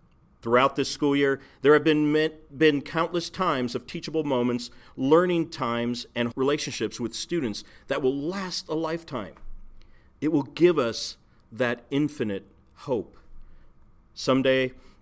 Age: 40-59